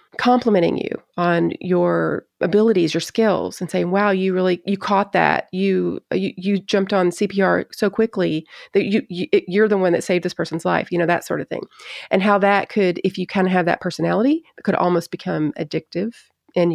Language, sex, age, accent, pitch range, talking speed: English, female, 30-49, American, 170-200 Hz, 205 wpm